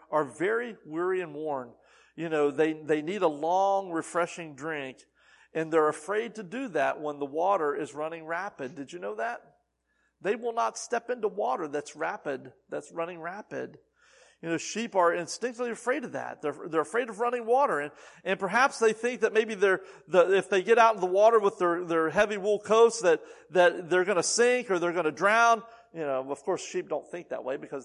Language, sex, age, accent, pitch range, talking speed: English, male, 40-59, American, 170-260 Hz, 210 wpm